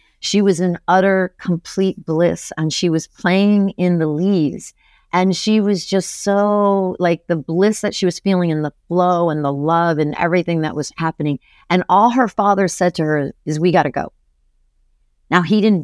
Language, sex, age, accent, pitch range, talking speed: English, female, 40-59, American, 145-185 Hz, 195 wpm